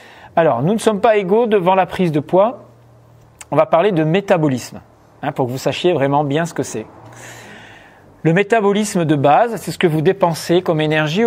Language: English